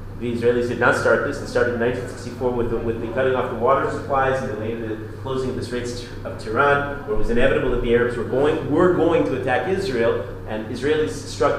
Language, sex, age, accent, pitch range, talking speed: English, male, 40-59, American, 110-160 Hz, 230 wpm